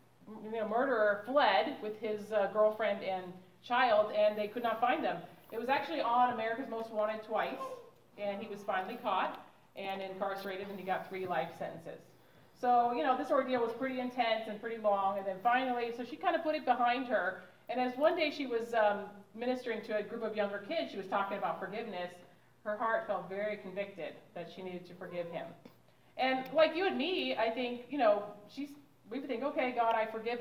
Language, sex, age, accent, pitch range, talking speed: English, female, 40-59, American, 200-255 Hz, 205 wpm